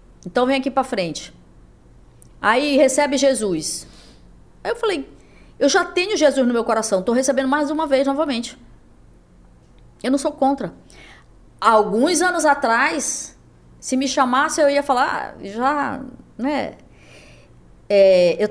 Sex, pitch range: female, 190-275 Hz